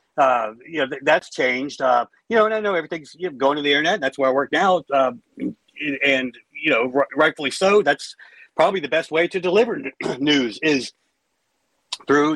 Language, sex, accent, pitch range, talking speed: English, male, American, 135-190 Hz, 210 wpm